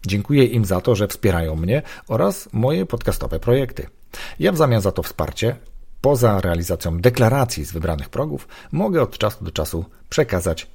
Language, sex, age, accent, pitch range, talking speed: Polish, male, 40-59, native, 85-120 Hz, 160 wpm